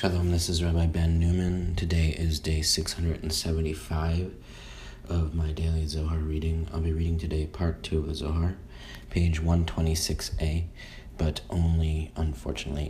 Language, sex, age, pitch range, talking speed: English, male, 30-49, 75-85 Hz, 130 wpm